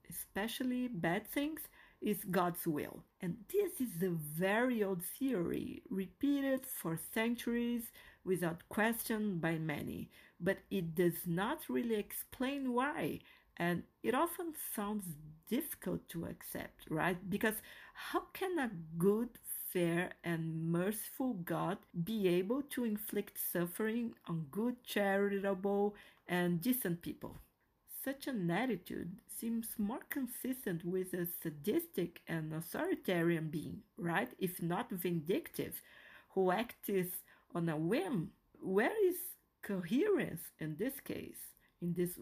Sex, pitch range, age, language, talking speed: female, 175-245 Hz, 40-59, English, 120 wpm